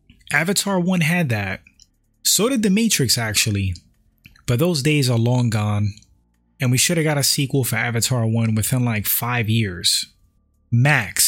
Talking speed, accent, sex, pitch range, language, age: 160 wpm, American, male, 110-140 Hz, English, 20-39